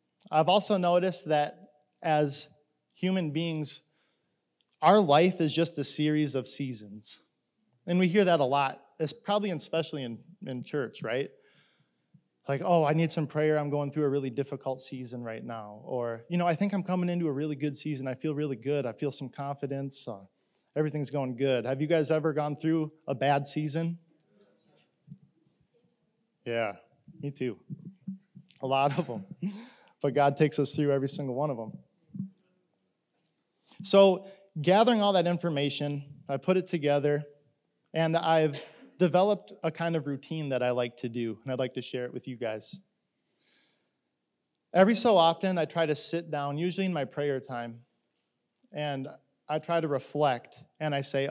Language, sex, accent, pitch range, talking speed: English, male, American, 135-170 Hz, 165 wpm